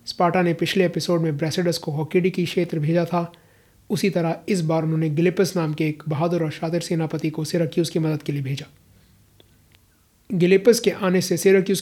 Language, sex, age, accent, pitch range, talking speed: Hindi, male, 30-49, native, 150-185 Hz, 190 wpm